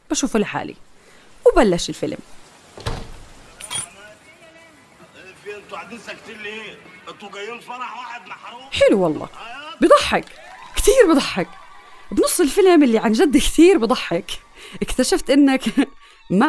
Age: 30-49